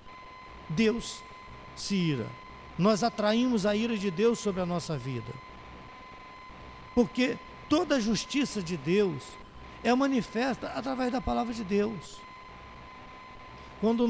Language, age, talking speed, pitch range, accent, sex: Portuguese, 50-69, 115 wpm, 150-235 Hz, Brazilian, male